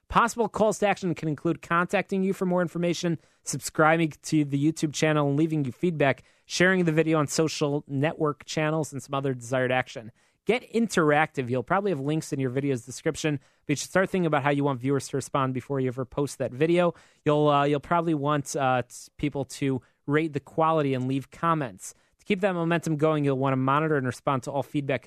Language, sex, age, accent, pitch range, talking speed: English, male, 30-49, American, 135-165 Hz, 210 wpm